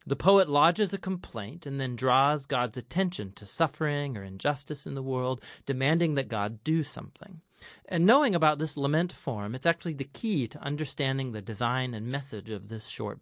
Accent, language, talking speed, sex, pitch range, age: American, English, 185 wpm, male, 120-165 Hz, 40-59